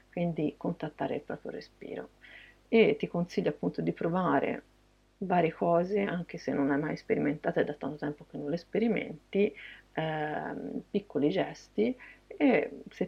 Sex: female